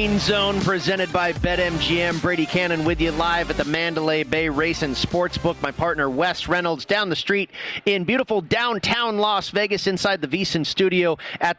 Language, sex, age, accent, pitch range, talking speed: English, male, 40-59, American, 160-190 Hz, 170 wpm